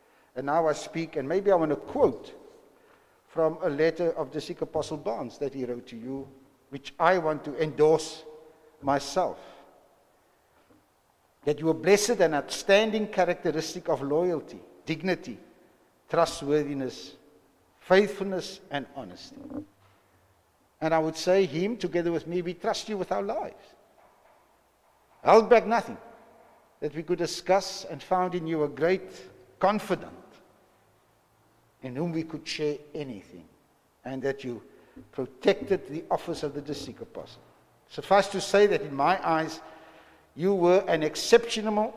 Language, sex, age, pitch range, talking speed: English, male, 60-79, 150-200 Hz, 140 wpm